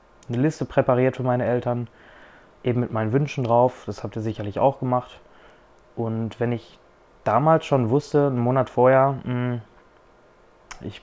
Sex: male